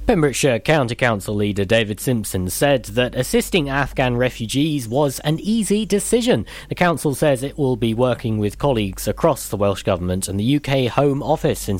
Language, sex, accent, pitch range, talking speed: English, male, British, 105-140 Hz, 175 wpm